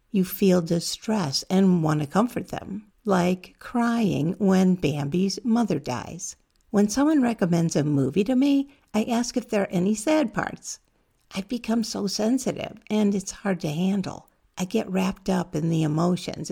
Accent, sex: American, female